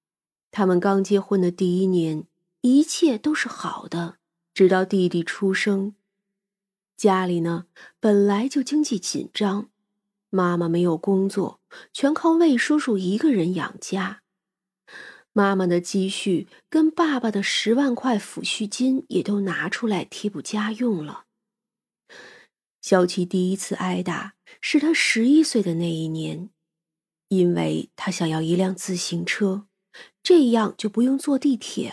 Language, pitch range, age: Chinese, 180-245 Hz, 30-49